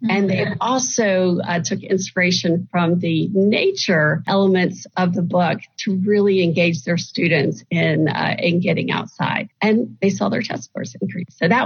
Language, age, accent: English, 50-69, American